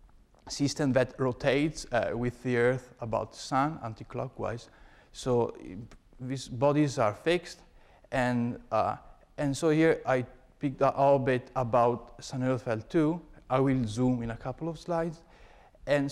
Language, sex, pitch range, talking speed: English, male, 125-155 Hz, 140 wpm